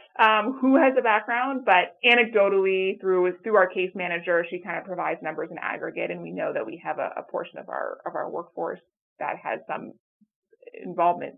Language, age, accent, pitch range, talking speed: English, 30-49, American, 165-215 Hz, 195 wpm